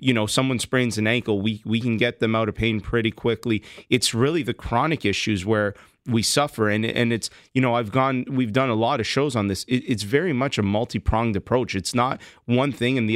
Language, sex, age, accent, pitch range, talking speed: English, male, 30-49, American, 105-120 Hz, 235 wpm